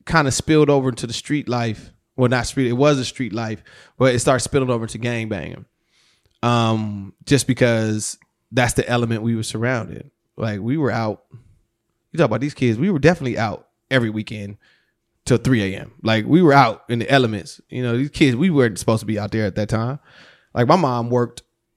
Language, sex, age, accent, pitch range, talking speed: English, male, 20-39, American, 110-135 Hz, 205 wpm